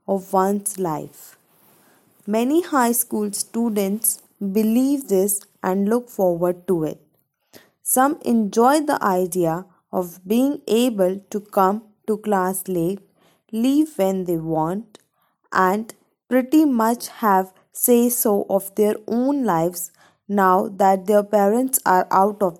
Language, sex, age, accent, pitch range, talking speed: English, female, 20-39, Indian, 190-230 Hz, 125 wpm